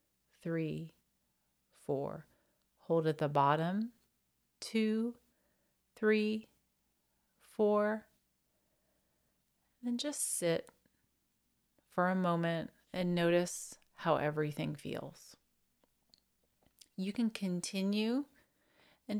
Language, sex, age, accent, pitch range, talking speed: English, female, 30-49, American, 160-210 Hz, 75 wpm